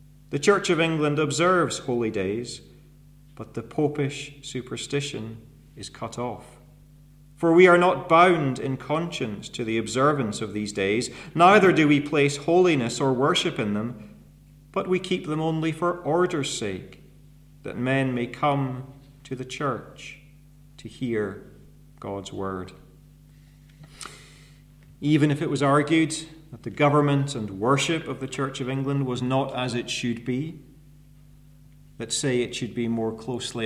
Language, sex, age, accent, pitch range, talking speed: English, male, 40-59, British, 125-145 Hz, 150 wpm